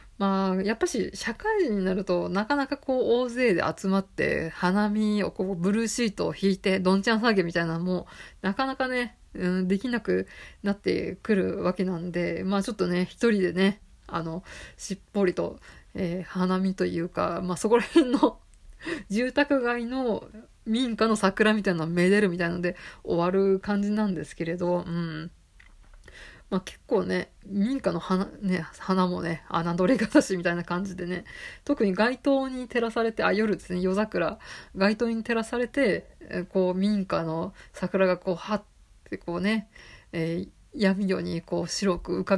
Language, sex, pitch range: Japanese, female, 180-215 Hz